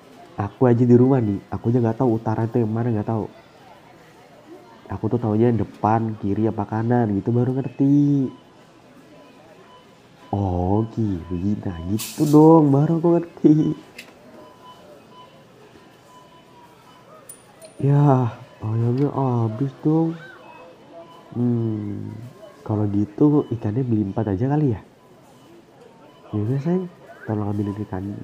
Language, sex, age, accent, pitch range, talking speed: Indonesian, male, 30-49, native, 105-140 Hz, 110 wpm